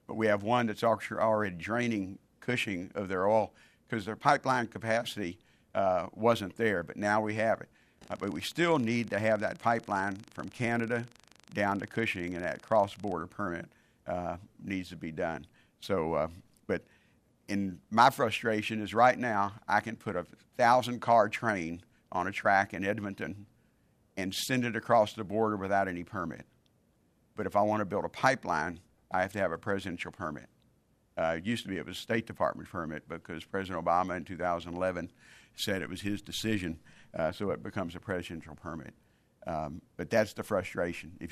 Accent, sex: American, male